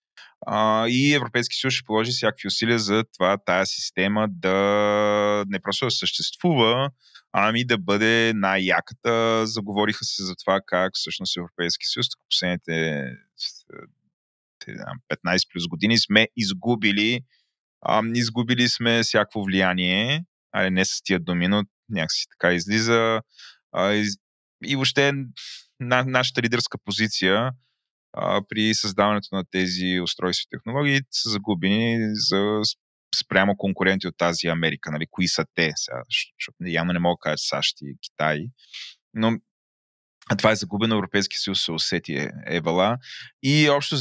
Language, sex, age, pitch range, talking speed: Bulgarian, male, 20-39, 95-120 Hz, 130 wpm